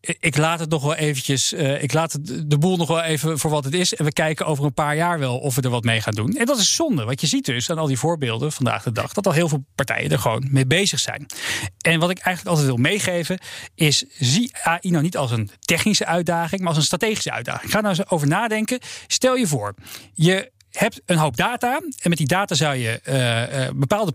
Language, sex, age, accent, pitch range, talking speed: Dutch, male, 40-59, Dutch, 140-185 Hz, 255 wpm